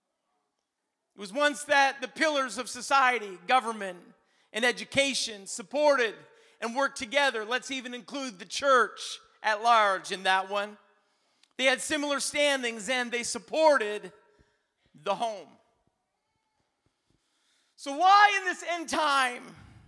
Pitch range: 225-285 Hz